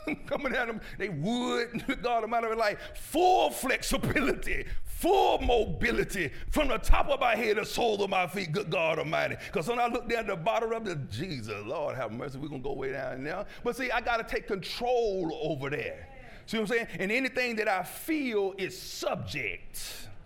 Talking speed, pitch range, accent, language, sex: 200 wpm, 145-220 Hz, American, English, male